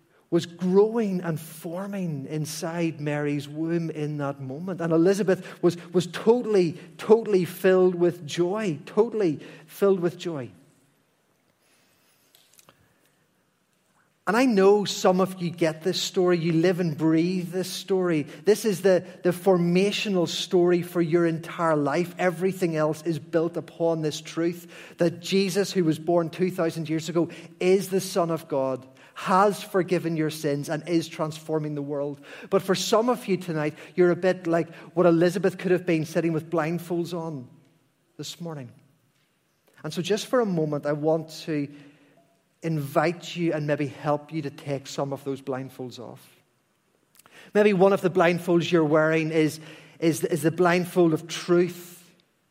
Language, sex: English, male